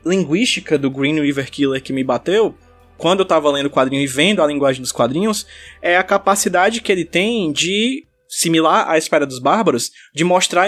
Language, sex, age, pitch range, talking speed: Portuguese, male, 20-39, 155-220 Hz, 190 wpm